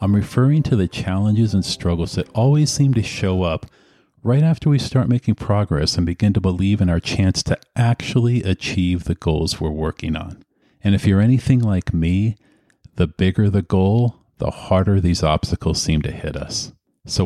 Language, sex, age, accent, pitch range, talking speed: English, male, 40-59, American, 85-115 Hz, 185 wpm